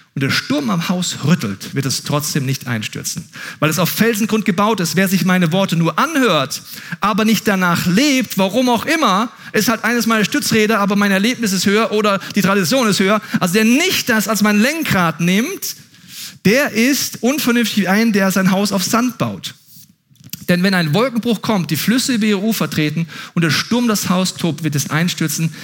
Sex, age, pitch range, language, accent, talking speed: male, 40-59, 145-210 Hz, German, German, 195 wpm